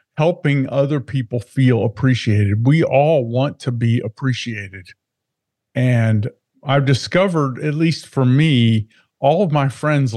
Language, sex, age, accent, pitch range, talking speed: English, male, 50-69, American, 115-145 Hz, 130 wpm